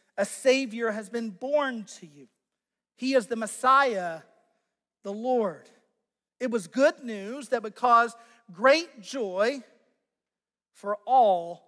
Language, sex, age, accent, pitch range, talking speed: English, male, 40-59, American, 210-270 Hz, 125 wpm